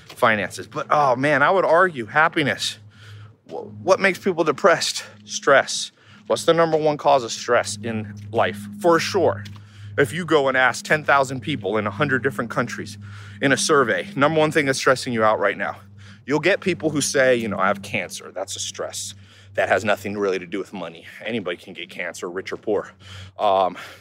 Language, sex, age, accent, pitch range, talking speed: English, male, 30-49, American, 100-155 Hz, 190 wpm